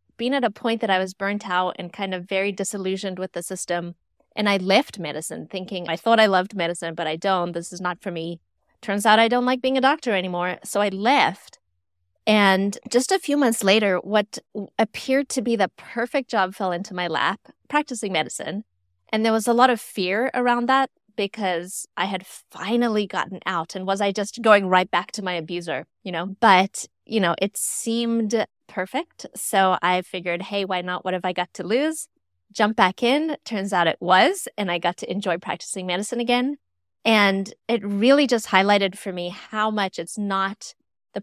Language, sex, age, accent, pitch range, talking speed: English, female, 20-39, American, 175-220 Hz, 200 wpm